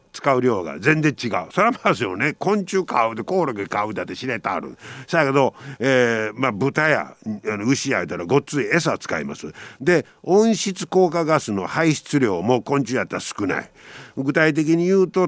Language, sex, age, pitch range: Japanese, male, 50-69, 120-180 Hz